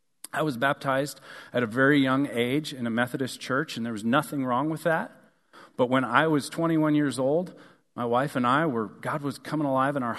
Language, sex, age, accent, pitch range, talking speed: English, male, 40-59, American, 125-155 Hz, 220 wpm